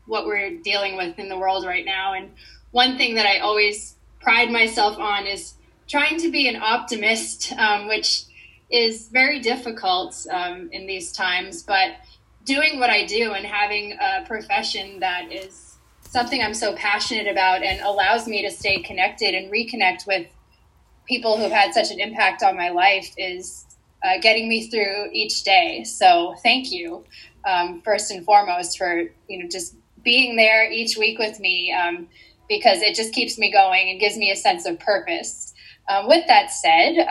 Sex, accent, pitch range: female, American, 190-245 Hz